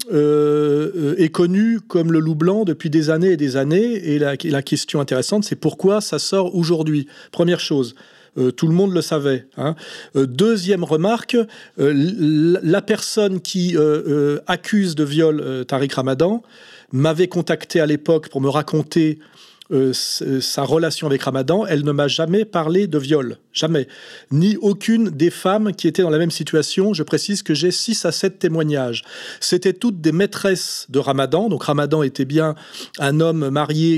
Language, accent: French, French